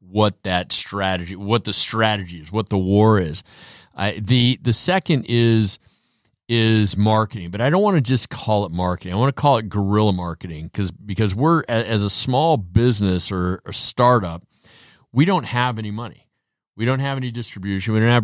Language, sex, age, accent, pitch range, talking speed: English, male, 40-59, American, 95-115 Hz, 190 wpm